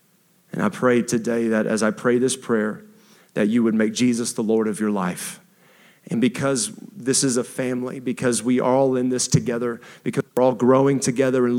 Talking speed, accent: 200 wpm, American